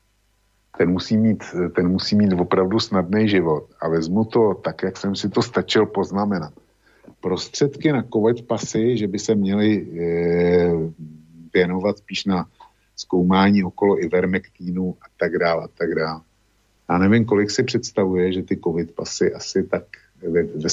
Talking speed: 145 wpm